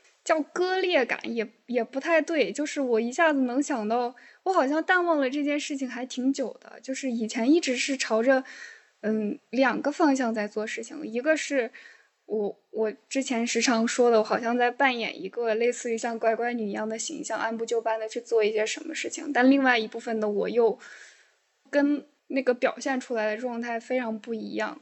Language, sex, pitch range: Chinese, female, 230-290 Hz